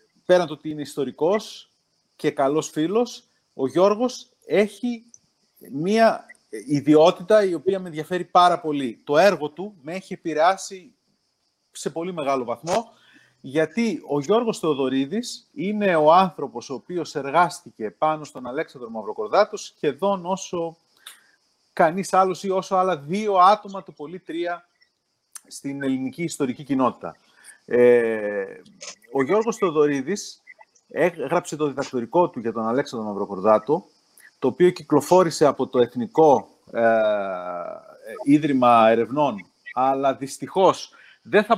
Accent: native